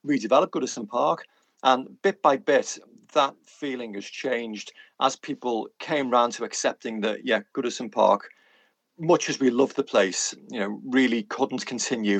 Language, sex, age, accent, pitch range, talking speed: English, male, 40-59, British, 110-145 Hz, 160 wpm